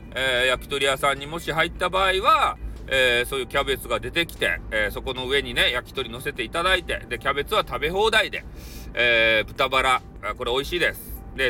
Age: 40-59